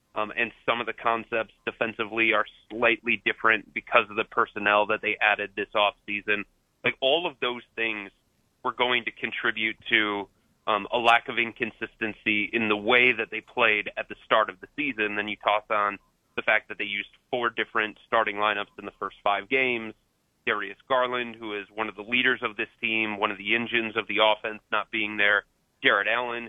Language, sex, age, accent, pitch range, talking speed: English, male, 30-49, American, 105-115 Hz, 195 wpm